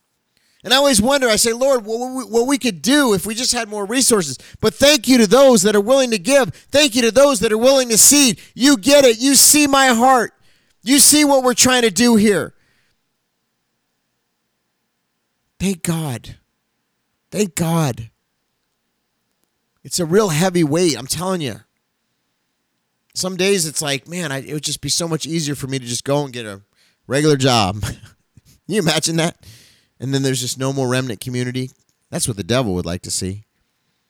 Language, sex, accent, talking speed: English, male, American, 185 wpm